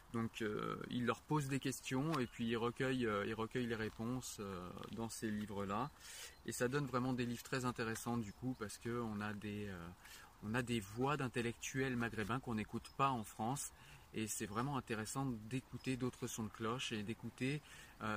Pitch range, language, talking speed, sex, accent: 110-130 Hz, French, 185 wpm, male, French